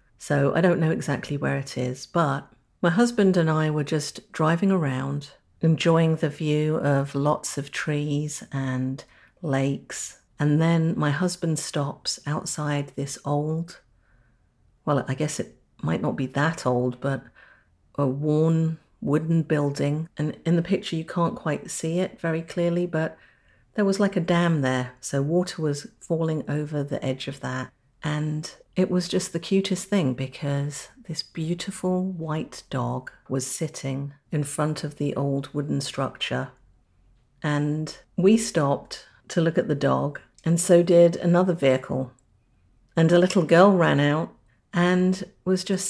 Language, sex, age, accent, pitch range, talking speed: English, female, 50-69, British, 140-175 Hz, 155 wpm